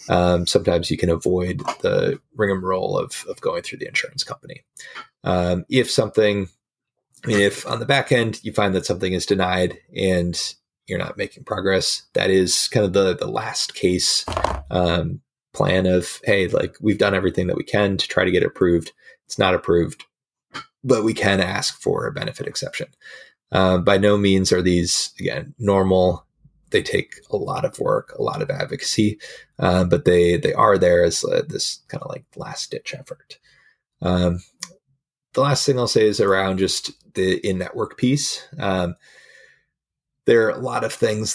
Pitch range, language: 90-135 Hz, English